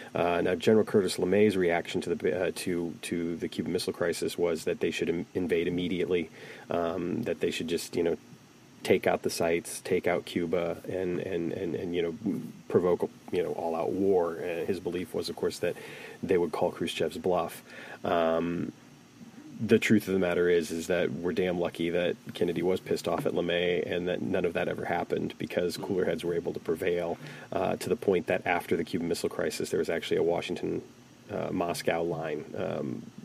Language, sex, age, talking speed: English, male, 30-49, 200 wpm